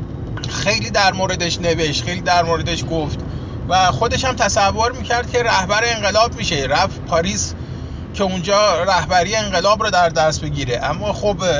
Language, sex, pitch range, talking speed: Persian, male, 125-205 Hz, 150 wpm